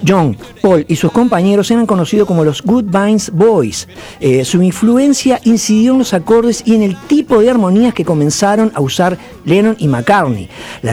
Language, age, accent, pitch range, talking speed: Spanish, 50-69, Argentinian, 150-220 Hz, 175 wpm